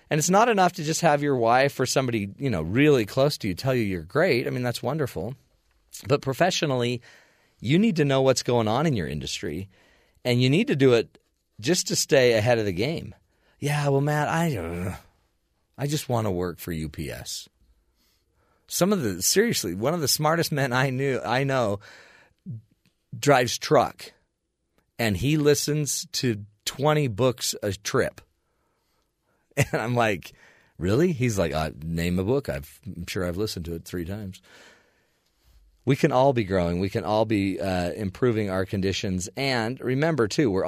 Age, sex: 40-59, male